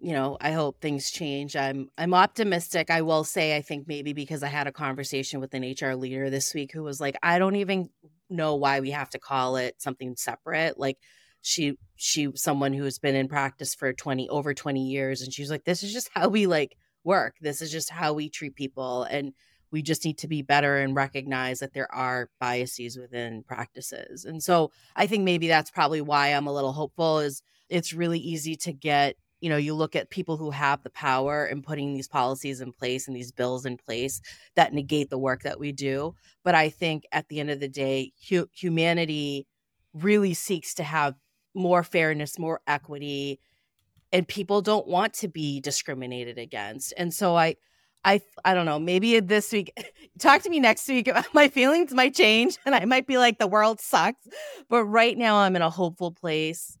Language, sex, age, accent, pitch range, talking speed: English, female, 30-49, American, 135-175 Hz, 205 wpm